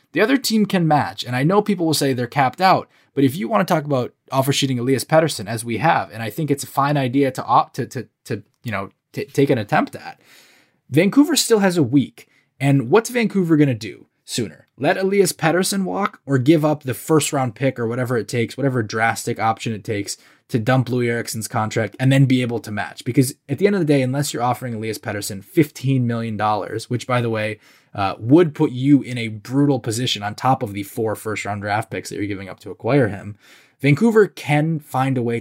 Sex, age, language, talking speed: male, 20-39, English, 230 wpm